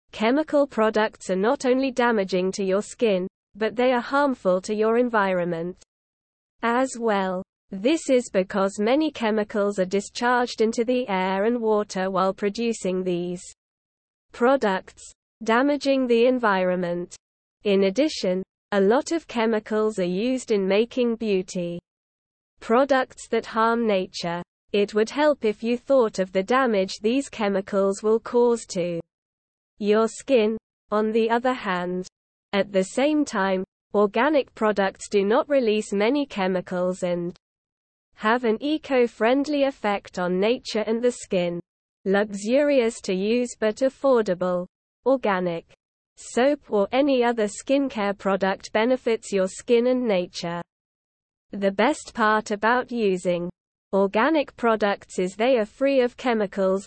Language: English